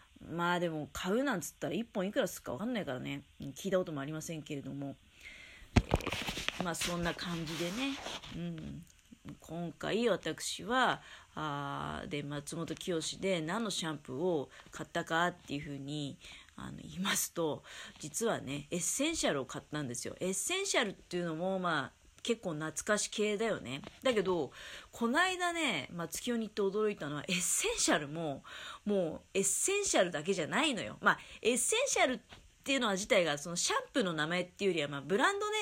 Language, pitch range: Japanese, 155-225 Hz